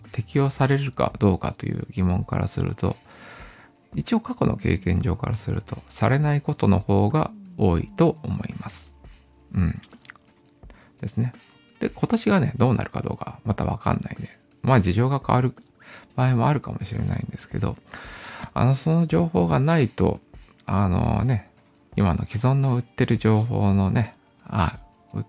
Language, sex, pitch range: Japanese, male, 105-145 Hz